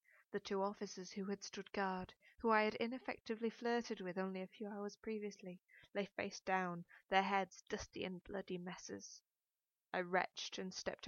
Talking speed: 170 wpm